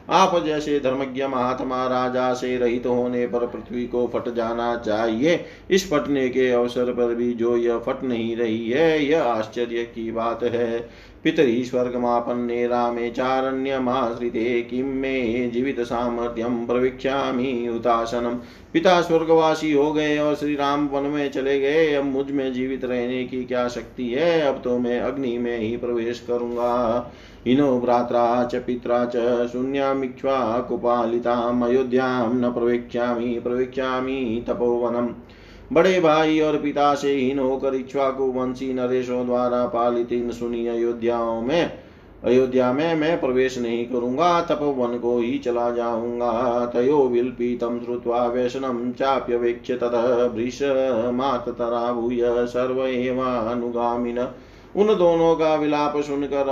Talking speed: 125 wpm